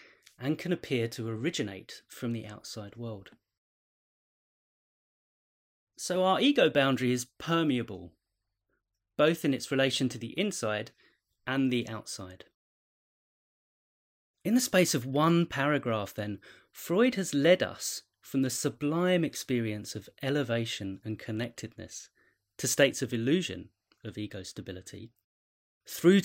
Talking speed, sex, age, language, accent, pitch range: 120 wpm, male, 30-49, English, British, 100-145 Hz